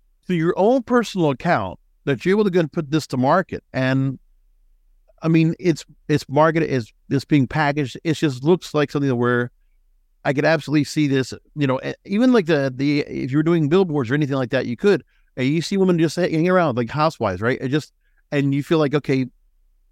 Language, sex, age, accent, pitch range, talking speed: English, male, 50-69, American, 130-170 Hz, 210 wpm